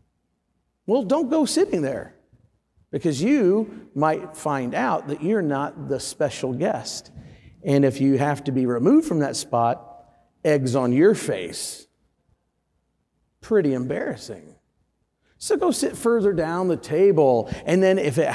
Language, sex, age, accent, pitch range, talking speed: English, male, 40-59, American, 130-160 Hz, 140 wpm